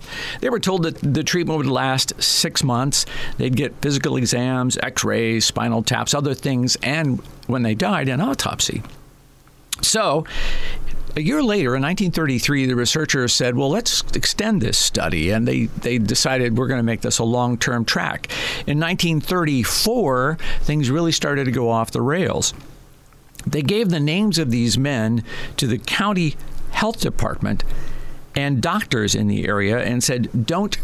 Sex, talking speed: male, 160 wpm